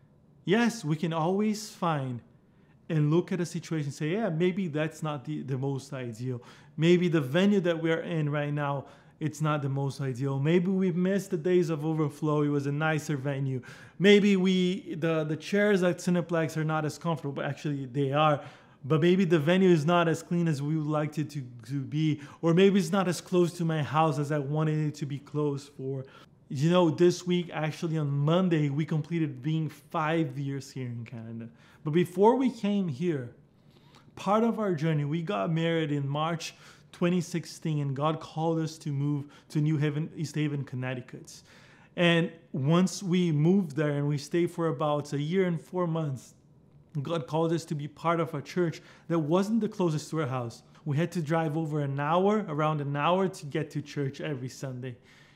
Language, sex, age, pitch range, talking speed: English, male, 20-39, 145-175 Hz, 195 wpm